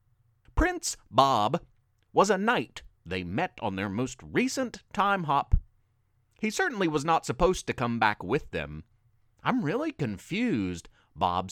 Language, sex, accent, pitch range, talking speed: English, male, American, 105-165 Hz, 140 wpm